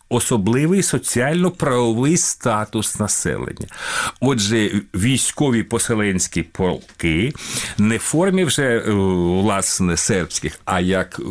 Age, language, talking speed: 50-69, Ukrainian, 85 wpm